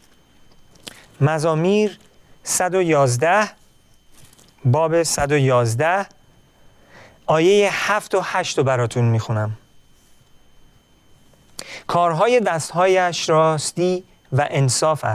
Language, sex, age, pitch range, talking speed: Persian, male, 40-59, 125-170 Hz, 65 wpm